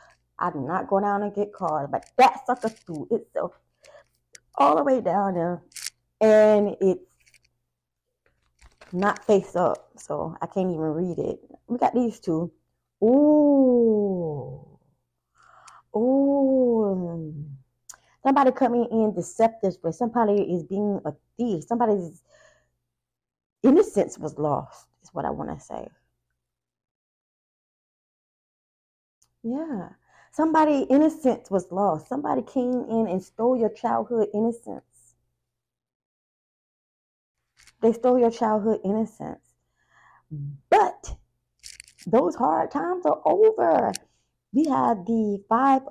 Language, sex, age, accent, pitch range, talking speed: English, female, 20-39, American, 175-245 Hz, 110 wpm